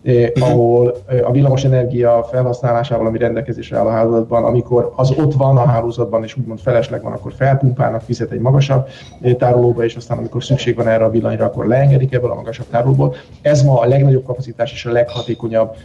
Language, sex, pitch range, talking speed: Hungarian, male, 115-130 Hz, 180 wpm